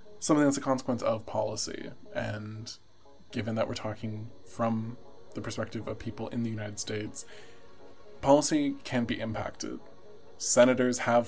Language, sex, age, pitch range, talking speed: English, male, 20-39, 110-135 Hz, 140 wpm